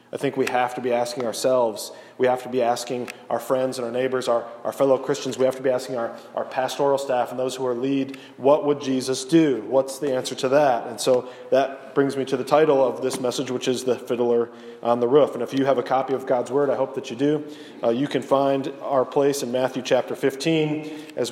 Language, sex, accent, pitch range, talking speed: English, male, American, 125-150 Hz, 250 wpm